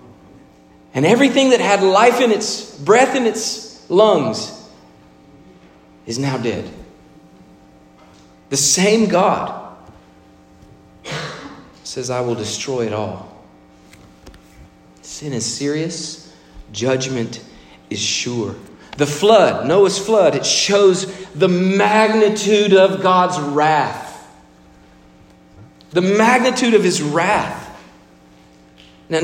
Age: 40-59